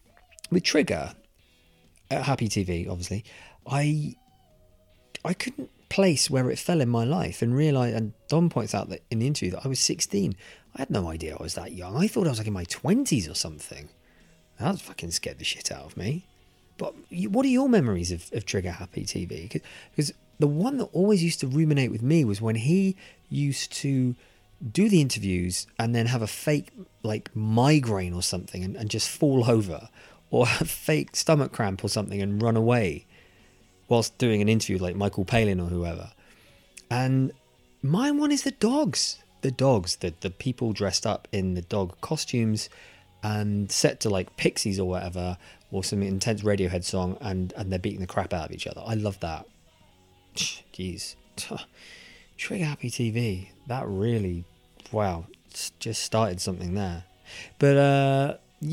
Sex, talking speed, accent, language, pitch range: male, 175 wpm, British, English, 95-135 Hz